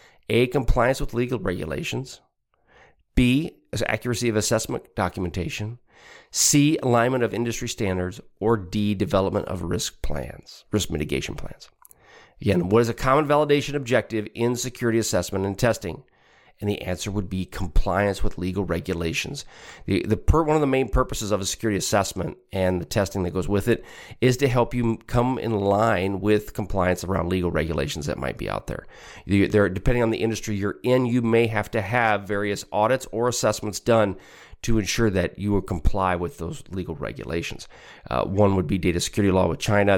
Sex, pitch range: male, 95-120 Hz